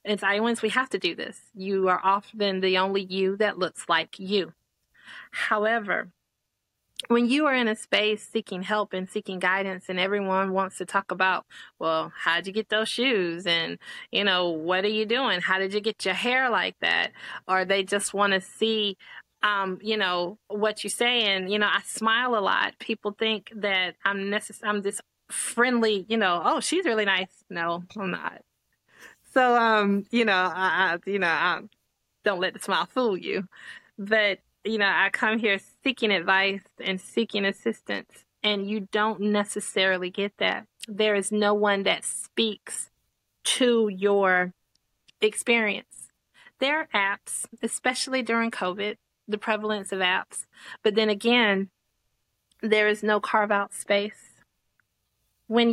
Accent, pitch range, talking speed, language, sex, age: American, 190-220 Hz, 165 wpm, English, female, 20-39